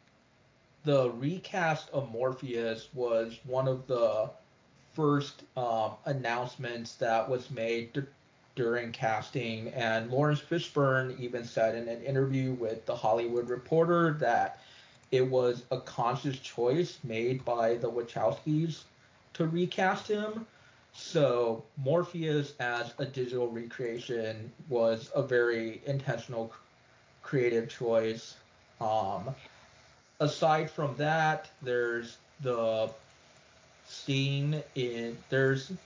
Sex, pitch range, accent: male, 115-140 Hz, American